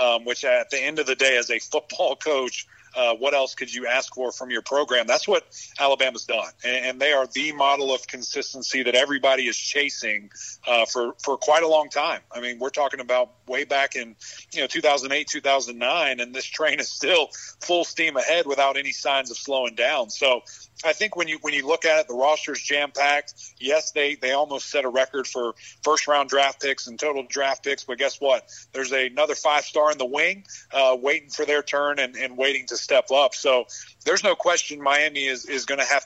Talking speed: 230 wpm